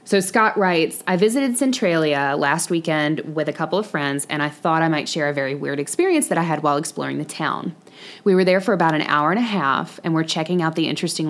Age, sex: 20-39, female